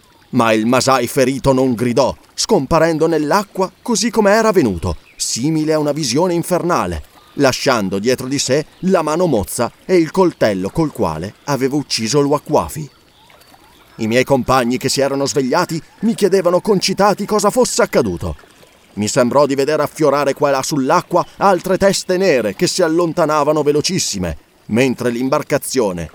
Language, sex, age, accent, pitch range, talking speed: Italian, male, 30-49, native, 125-180 Hz, 145 wpm